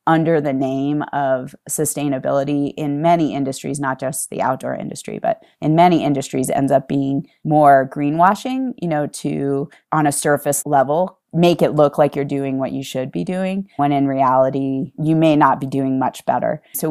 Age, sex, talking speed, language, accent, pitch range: 30-49, female, 180 wpm, English, American, 135-160 Hz